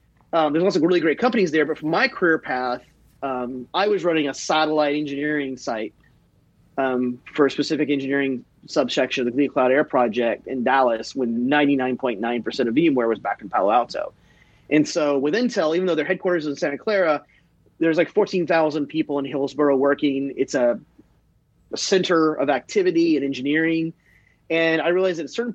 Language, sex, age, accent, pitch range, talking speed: English, male, 30-49, American, 145-190 Hz, 180 wpm